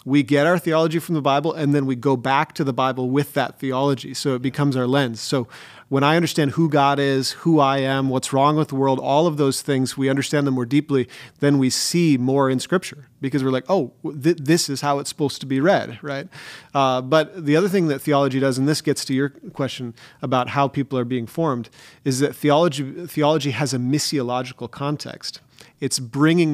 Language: English